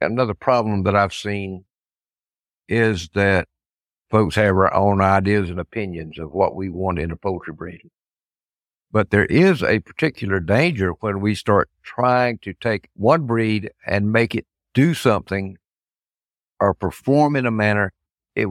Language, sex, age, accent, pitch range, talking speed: English, male, 60-79, American, 95-120 Hz, 150 wpm